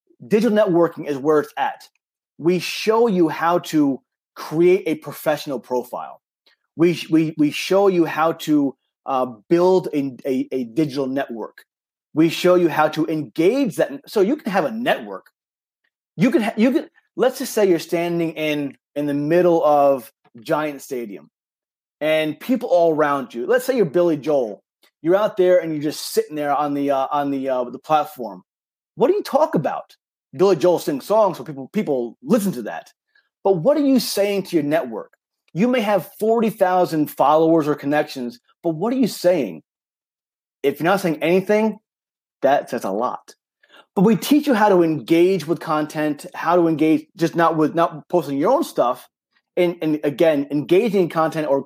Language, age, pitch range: English, 30-49, 150-200 Hz